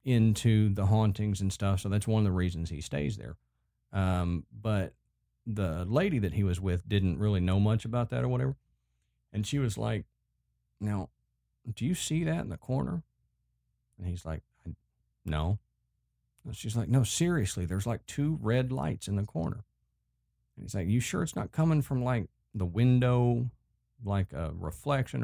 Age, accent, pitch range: 50-69, American, 90-125 Hz